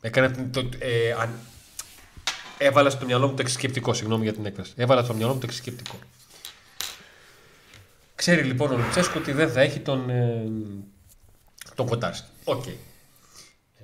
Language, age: Greek, 30-49